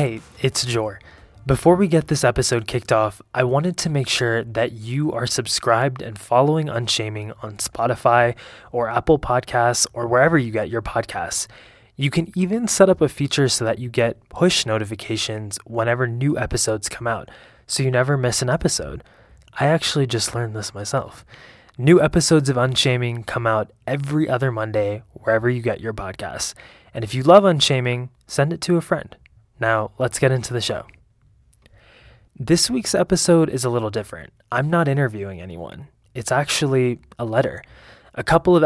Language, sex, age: English, male, 20-39